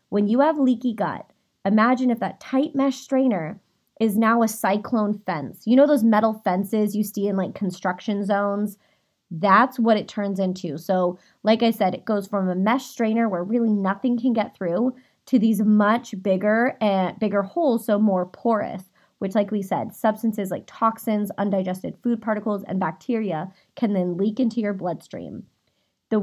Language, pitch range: English, 195-235 Hz